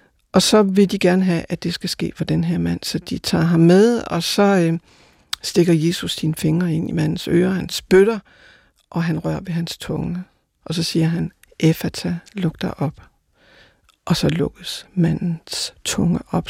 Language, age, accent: Danish, 60-79, native